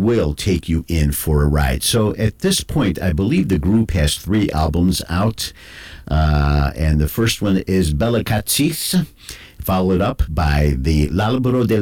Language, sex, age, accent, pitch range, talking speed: English, male, 50-69, American, 75-105 Hz, 165 wpm